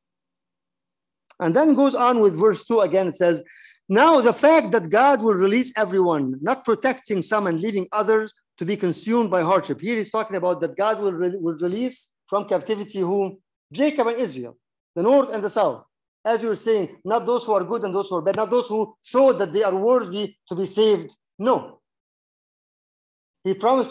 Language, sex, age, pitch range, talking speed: English, male, 50-69, 185-240 Hz, 190 wpm